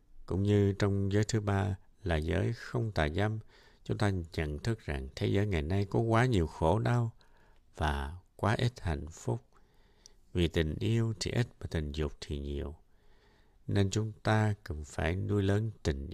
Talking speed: 180 wpm